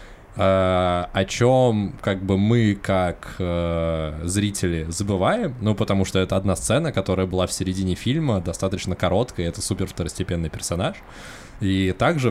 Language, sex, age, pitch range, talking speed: Russian, male, 20-39, 95-120 Hz, 135 wpm